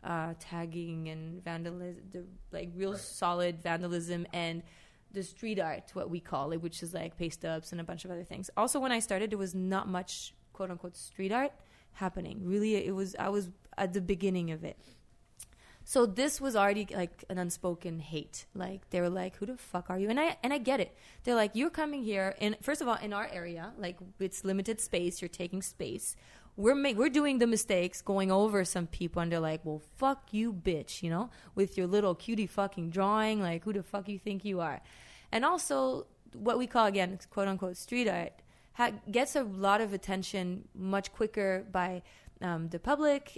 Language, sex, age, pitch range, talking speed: English, female, 20-39, 175-215 Hz, 200 wpm